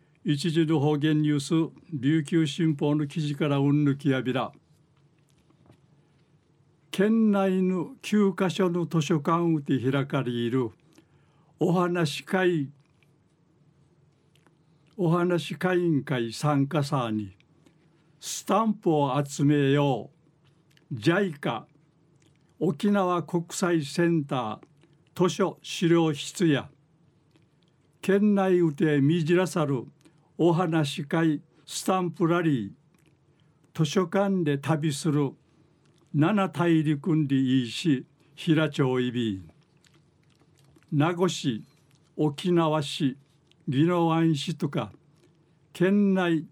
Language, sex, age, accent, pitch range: Japanese, male, 60-79, native, 145-170 Hz